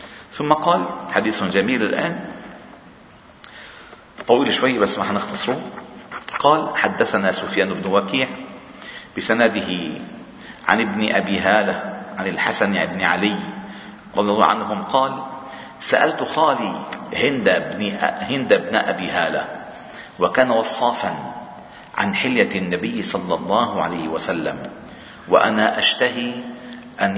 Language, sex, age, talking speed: Arabic, male, 50-69, 105 wpm